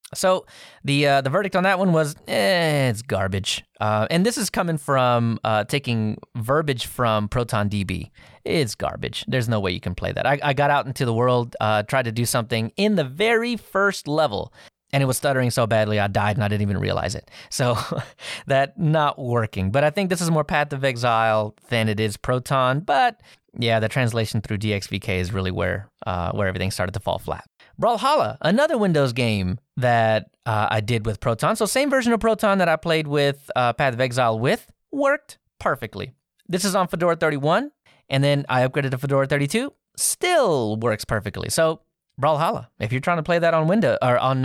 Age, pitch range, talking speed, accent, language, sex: 30-49, 110-165 Hz, 200 wpm, American, English, male